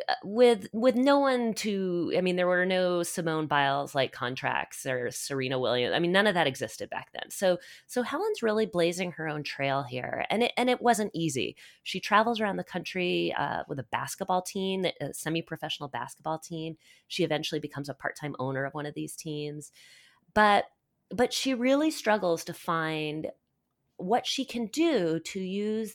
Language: English